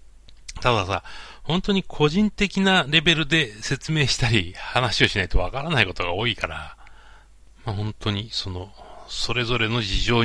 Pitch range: 90-130 Hz